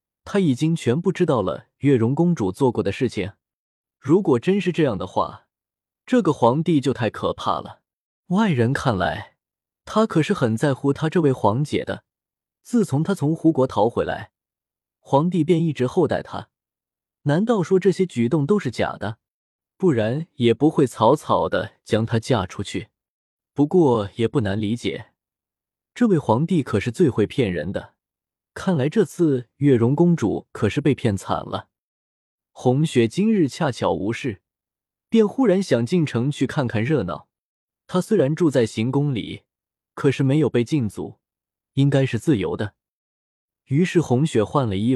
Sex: male